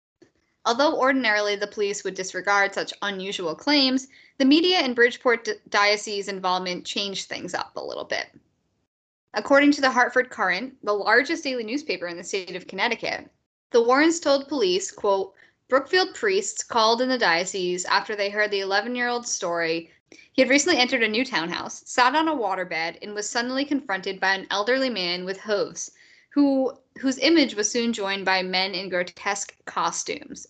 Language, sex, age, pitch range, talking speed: English, female, 10-29, 190-265 Hz, 170 wpm